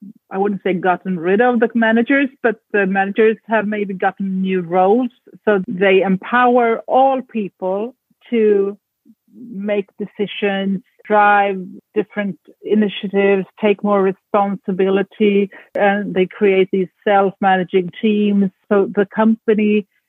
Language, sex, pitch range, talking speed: English, female, 195-230 Hz, 115 wpm